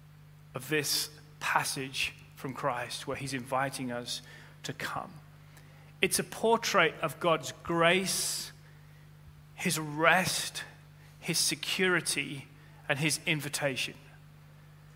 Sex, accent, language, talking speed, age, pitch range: male, British, English, 95 wpm, 30-49, 150-190 Hz